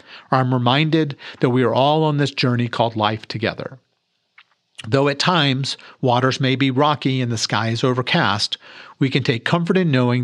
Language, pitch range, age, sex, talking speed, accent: English, 120-145 Hz, 50-69, male, 175 wpm, American